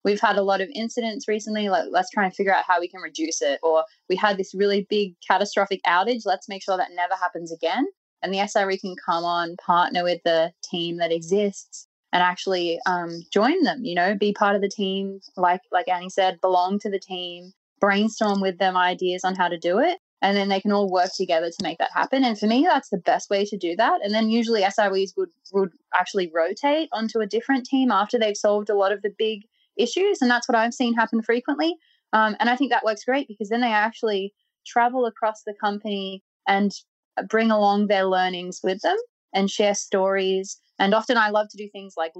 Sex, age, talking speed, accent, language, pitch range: female, 20-39, 220 wpm, Australian, English, 180-220 Hz